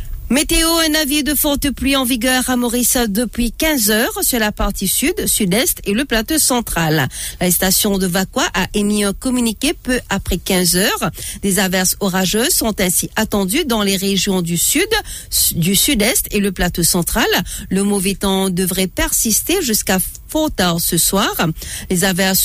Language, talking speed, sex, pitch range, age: English, 175 wpm, female, 190-245 Hz, 50-69